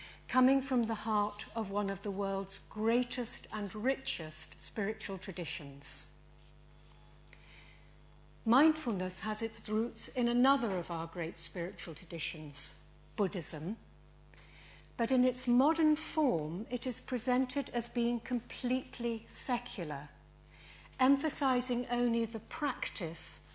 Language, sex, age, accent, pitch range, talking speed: English, female, 50-69, British, 175-250 Hz, 105 wpm